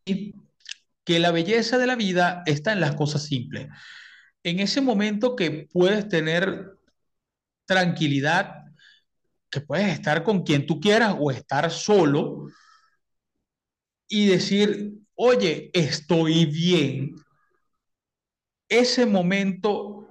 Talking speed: 105 wpm